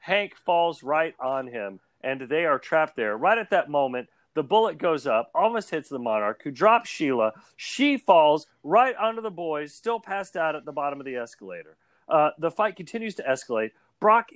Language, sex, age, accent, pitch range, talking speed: English, male, 40-59, American, 130-210 Hz, 195 wpm